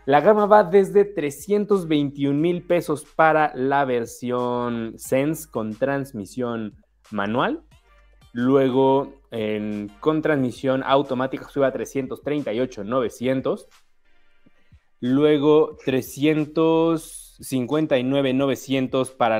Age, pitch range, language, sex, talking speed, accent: 20-39, 120-155 Hz, Spanish, male, 75 wpm, Mexican